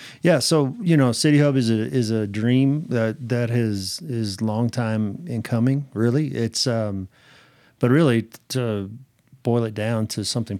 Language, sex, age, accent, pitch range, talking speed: English, male, 40-59, American, 110-125 Hz, 170 wpm